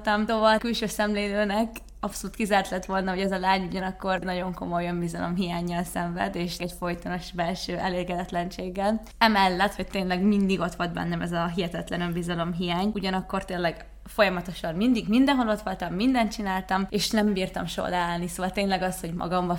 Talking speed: 160 wpm